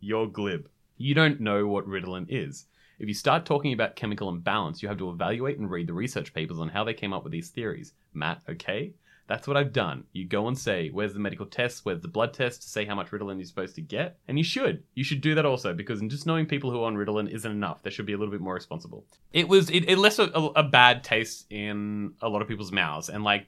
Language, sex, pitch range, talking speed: English, male, 100-135 Hz, 260 wpm